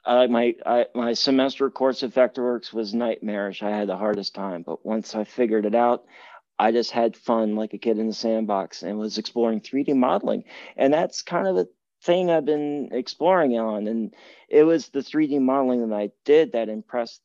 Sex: male